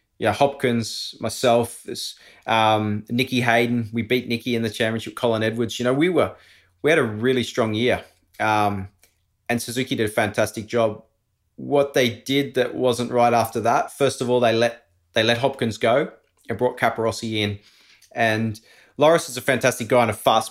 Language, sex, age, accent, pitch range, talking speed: English, male, 20-39, Australian, 105-120 Hz, 180 wpm